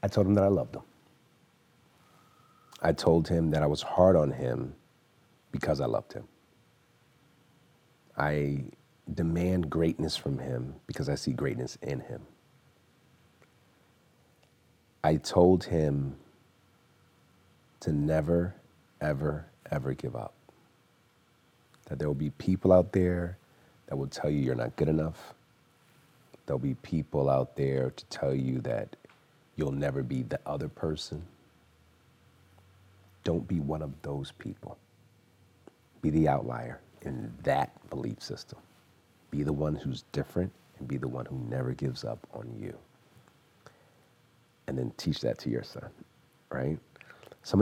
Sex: male